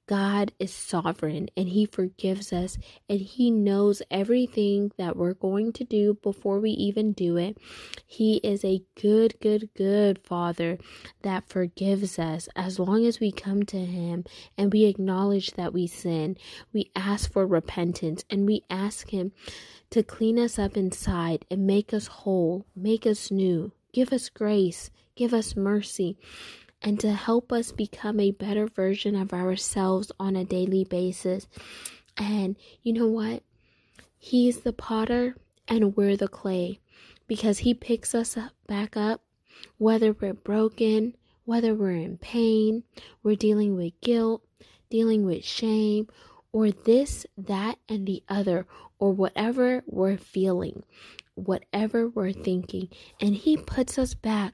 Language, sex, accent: English, female, American